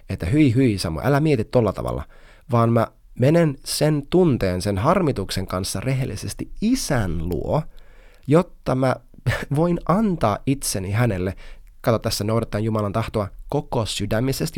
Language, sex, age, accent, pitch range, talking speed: Finnish, male, 30-49, native, 95-135 Hz, 130 wpm